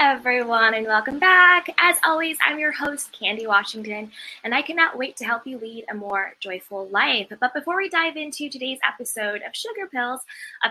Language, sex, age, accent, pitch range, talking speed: English, female, 20-39, American, 220-300 Hz, 190 wpm